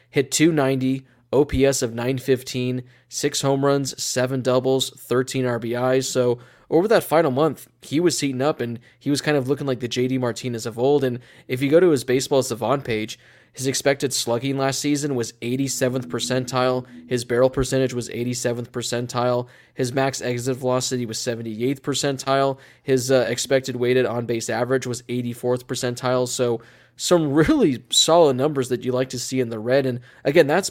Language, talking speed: English, 170 wpm